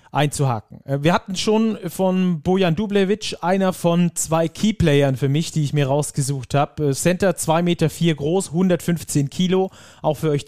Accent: German